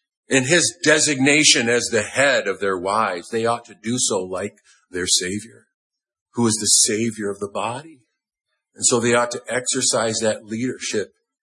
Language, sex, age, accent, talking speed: English, male, 50-69, American, 170 wpm